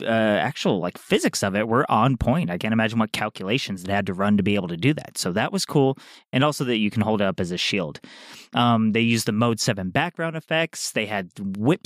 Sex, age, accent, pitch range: male, 30-49, American, 105-140 Hz